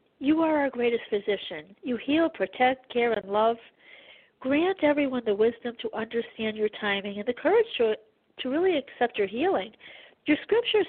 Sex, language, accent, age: female, English, American, 50-69